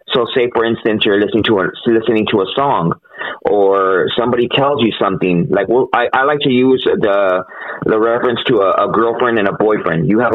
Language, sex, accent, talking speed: English, male, American, 210 wpm